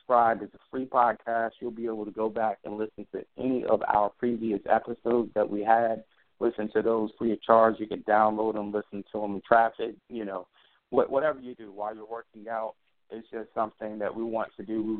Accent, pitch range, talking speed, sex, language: American, 105-120 Hz, 210 wpm, male, English